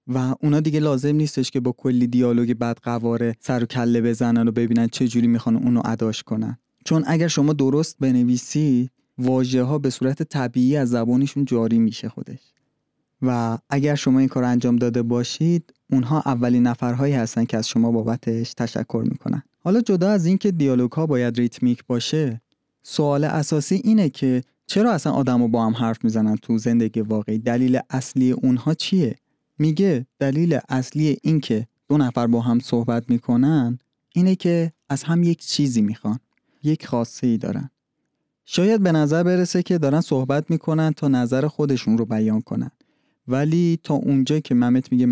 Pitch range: 120-150 Hz